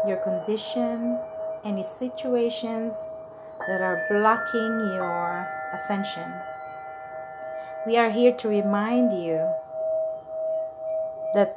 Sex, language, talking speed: female, English, 85 wpm